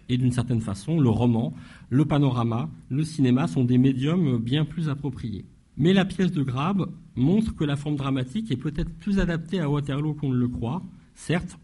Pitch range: 120-160 Hz